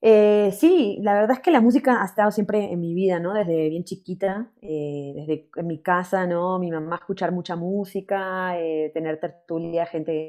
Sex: female